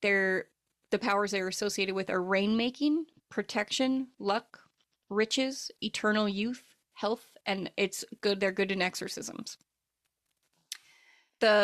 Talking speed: 115 wpm